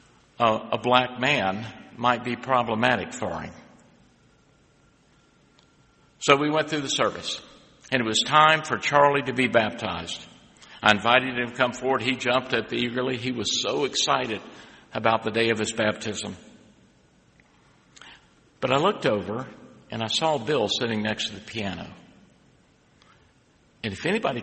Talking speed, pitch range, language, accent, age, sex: 145 wpm, 110-135 Hz, English, American, 60-79, male